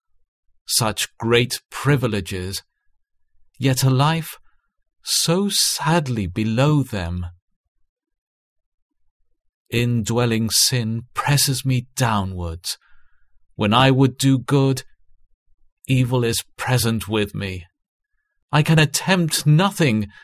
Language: English